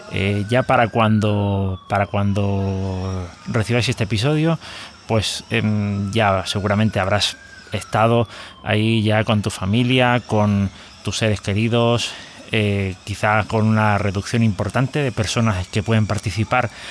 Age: 30-49